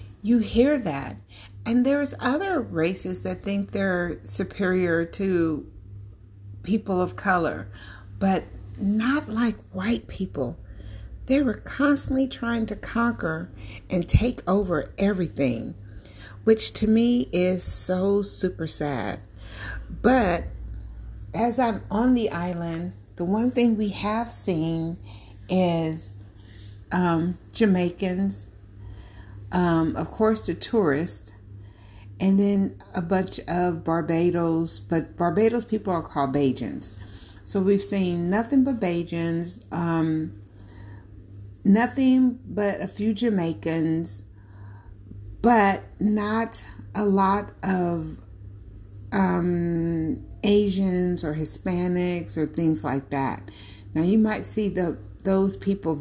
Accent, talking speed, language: American, 110 wpm, English